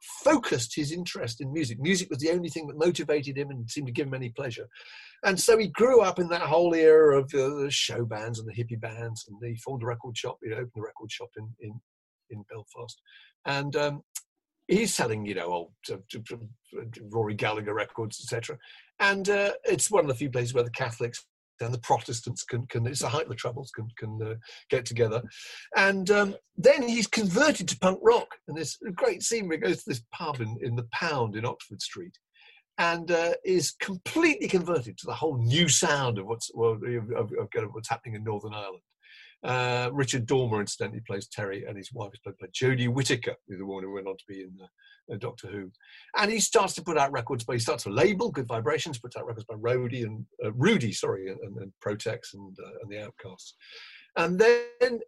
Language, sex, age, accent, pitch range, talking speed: English, male, 50-69, British, 115-175 Hz, 215 wpm